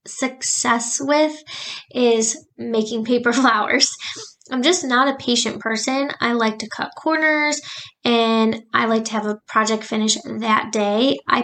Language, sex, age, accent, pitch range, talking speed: English, female, 10-29, American, 220-265 Hz, 145 wpm